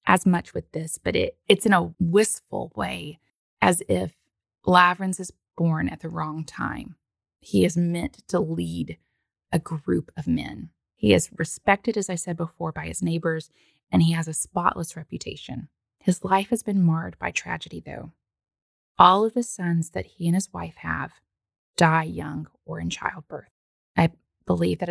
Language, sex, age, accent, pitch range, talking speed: English, female, 20-39, American, 160-200 Hz, 170 wpm